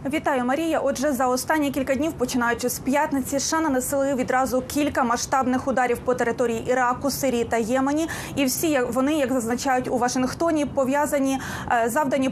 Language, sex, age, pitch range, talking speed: Ukrainian, female, 20-39, 260-300 Hz, 150 wpm